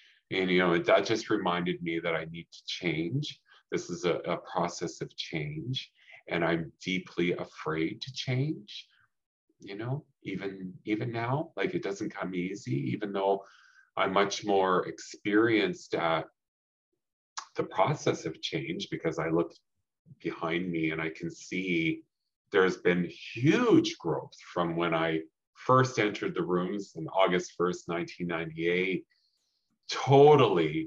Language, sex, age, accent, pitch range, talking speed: English, male, 40-59, American, 85-130 Hz, 140 wpm